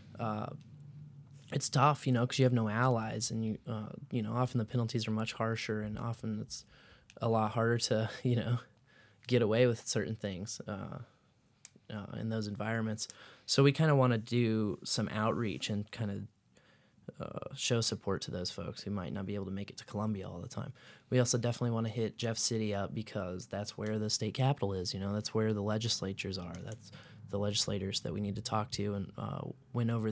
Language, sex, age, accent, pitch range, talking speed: English, male, 20-39, American, 105-125 Hz, 210 wpm